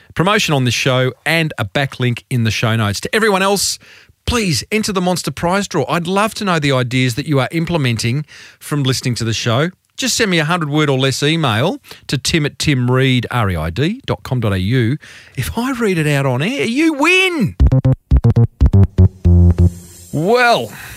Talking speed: 165 wpm